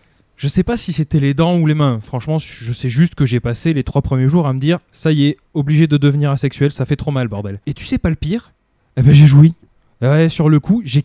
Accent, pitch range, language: French, 140-175 Hz, French